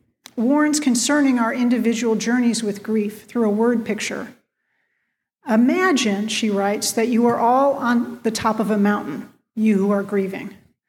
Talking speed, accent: 155 wpm, American